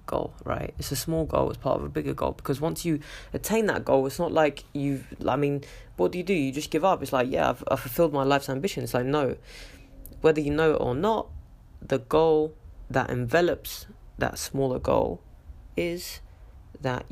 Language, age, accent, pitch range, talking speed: English, 20-39, British, 120-145 Hz, 205 wpm